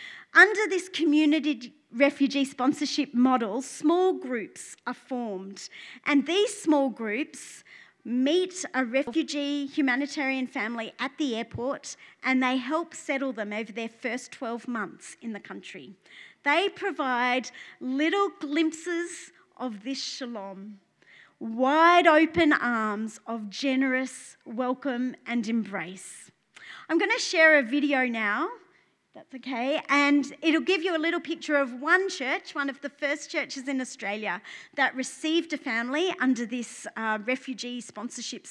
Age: 40-59